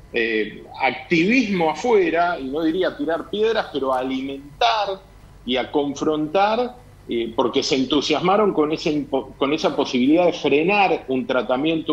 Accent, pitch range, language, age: Argentinian, 140-215 Hz, Spanish, 40-59